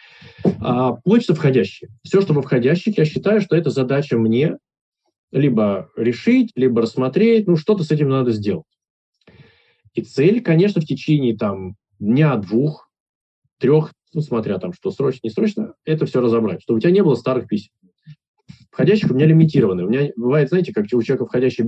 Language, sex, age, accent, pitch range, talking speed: Russian, male, 20-39, native, 120-165 Hz, 170 wpm